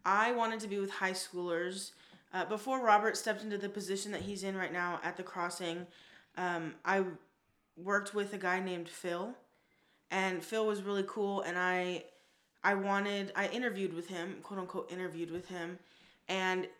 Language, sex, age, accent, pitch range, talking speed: English, female, 20-39, American, 180-200 Hz, 175 wpm